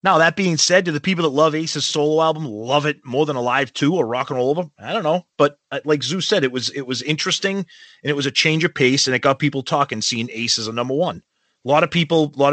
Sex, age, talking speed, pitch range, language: male, 30-49, 285 wpm, 130-165 Hz, English